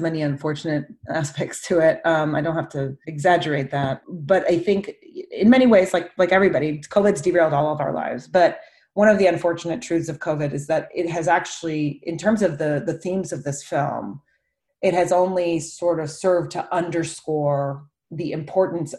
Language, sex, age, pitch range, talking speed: English, female, 30-49, 150-180 Hz, 185 wpm